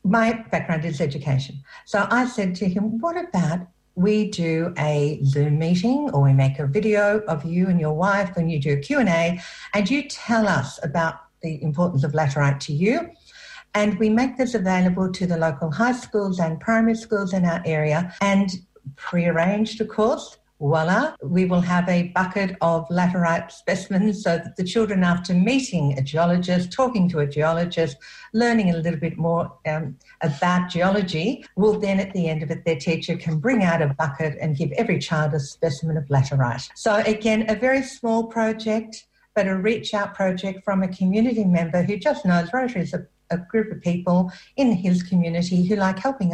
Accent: Australian